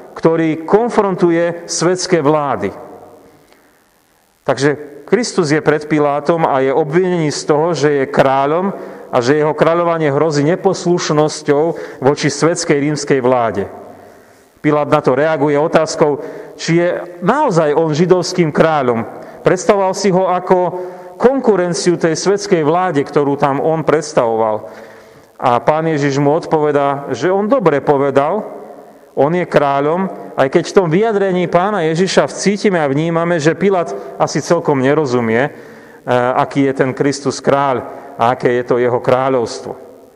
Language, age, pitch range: Slovak, 40-59, 140-175 Hz